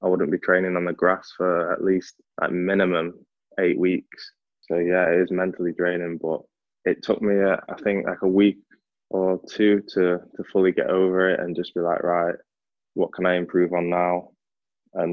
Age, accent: 20-39, British